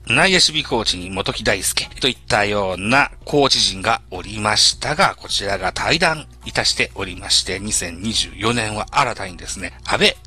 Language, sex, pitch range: Japanese, male, 100-160 Hz